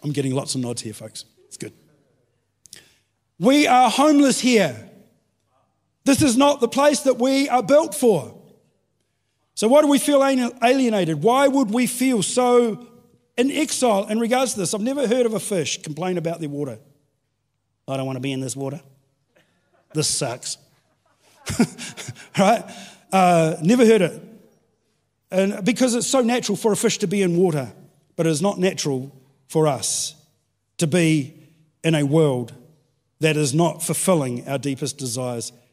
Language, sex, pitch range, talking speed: English, male, 135-215 Hz, 160 wpm